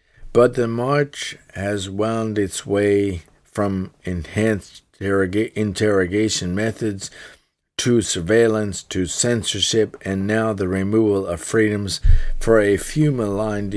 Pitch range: 95-120 Hz